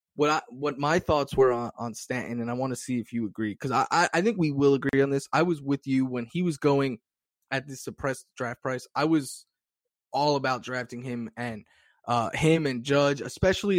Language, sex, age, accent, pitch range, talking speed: English, male, 20-39, American, 120-145 Hz, 225 wpm